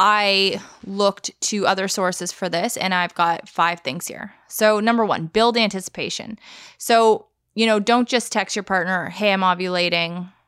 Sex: female